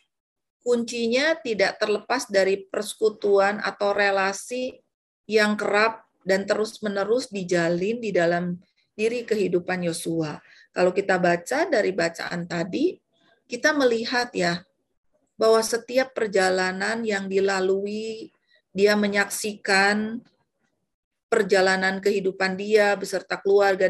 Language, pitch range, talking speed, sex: Indonesian, 190-225 Hz, 95 wpm, female